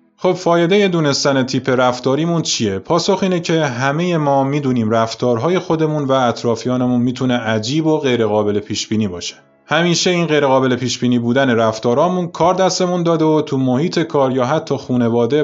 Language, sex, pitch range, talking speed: Persian, male, 115-145 Hz, 145 wpm